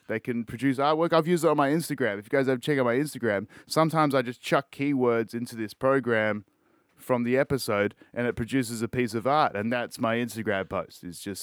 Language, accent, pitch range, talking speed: English, Australian, 115-145 Hz, 225 wpm